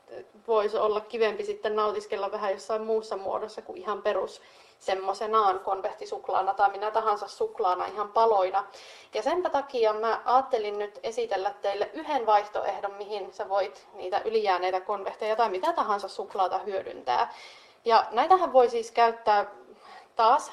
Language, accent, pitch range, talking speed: Finnish, native, 205-250 Hz, 135 wpm